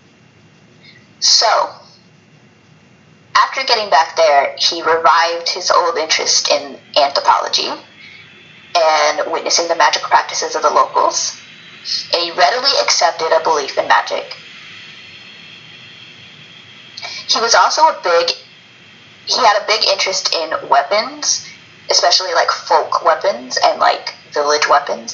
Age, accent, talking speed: 30-49, American, 115 wpm